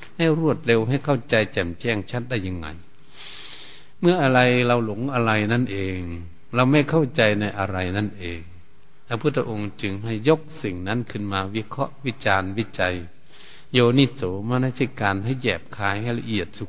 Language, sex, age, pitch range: Thai, male, 70-89, 100-135 Hz